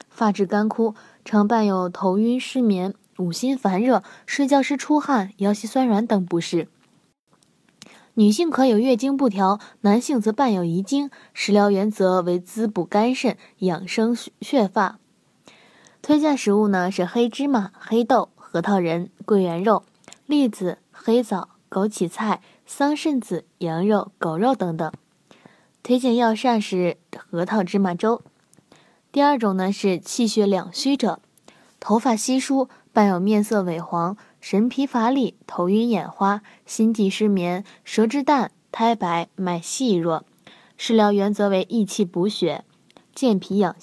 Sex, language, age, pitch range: female, Chinese, 20-39, 190-240 Hz